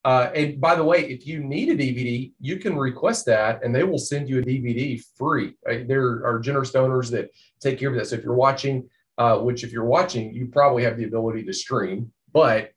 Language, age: English, 30-49